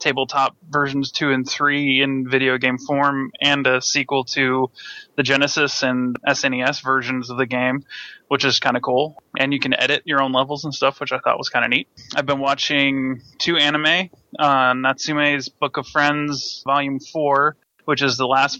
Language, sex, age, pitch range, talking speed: English, male, 20-39, 135-145 Hz, 185 wpm